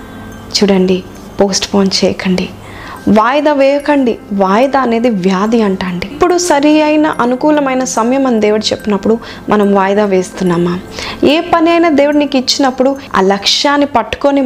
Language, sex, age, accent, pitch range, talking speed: Telugu, female, 20-39, native, 195-260 Hz, 130 wpm